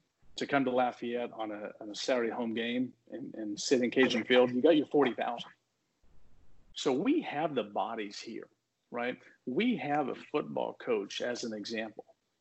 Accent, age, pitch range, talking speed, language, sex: American, 40-59, 125-165 Hz, 175 wpm, English, male